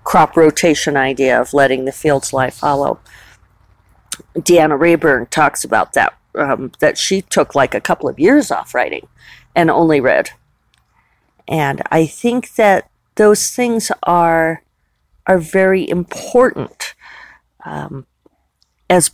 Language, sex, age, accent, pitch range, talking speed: English, female, 50-69, American, 140-190 Hz, 125 wpm